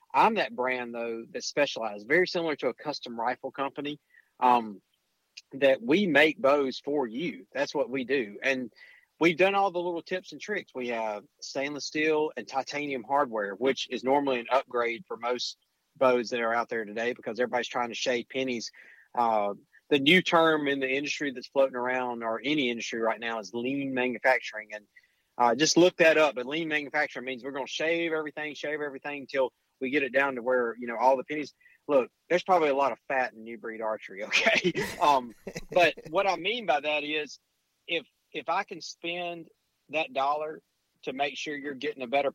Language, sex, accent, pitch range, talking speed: English, male, American, 125-150 Hz, 200 wpm